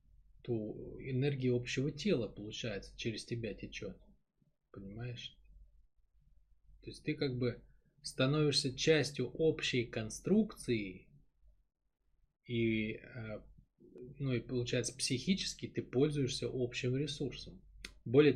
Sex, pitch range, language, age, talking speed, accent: male, 110-145 Hz, Russian, 20-39, 90 wpm, native